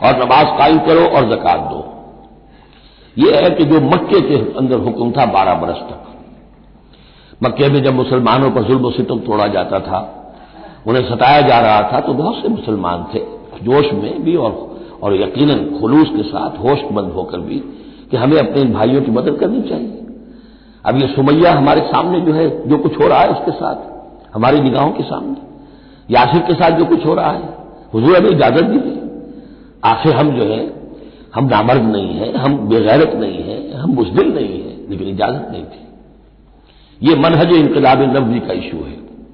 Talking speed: 175 wpm